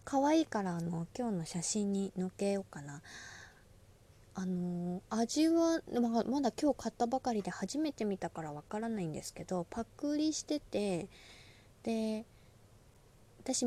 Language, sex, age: Japanese, female, 20-39